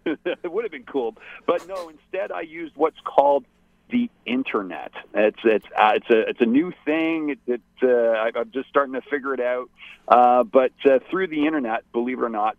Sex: male